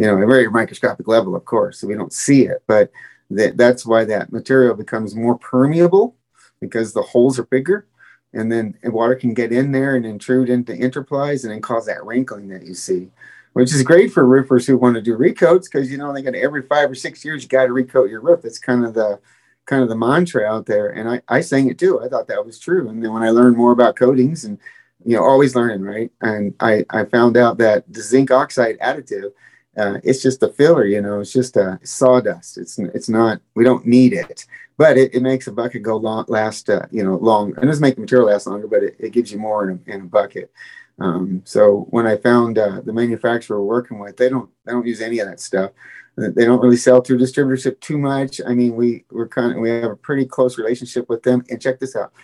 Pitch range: 115-135 Hz